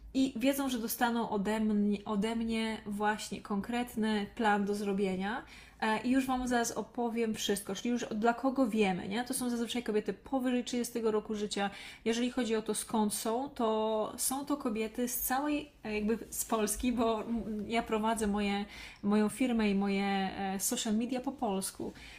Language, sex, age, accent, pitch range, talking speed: Polish, female, 20-39, native, 205-235 Hz, 155 wpm